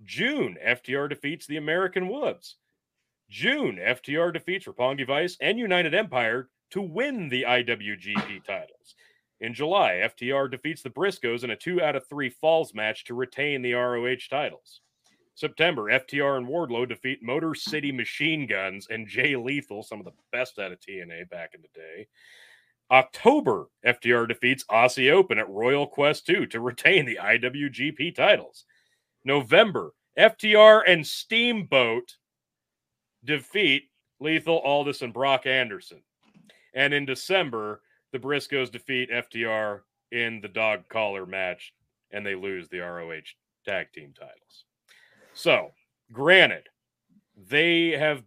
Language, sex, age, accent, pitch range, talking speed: English, male, 40-59, American, 120-155 Hz, 130 wpm